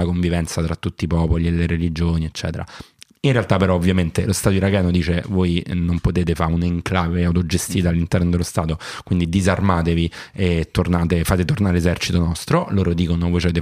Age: 30-49